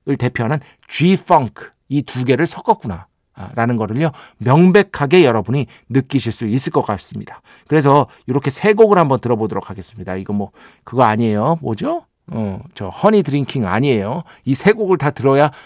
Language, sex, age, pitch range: Korean, male, 50-69, 115-160 Hz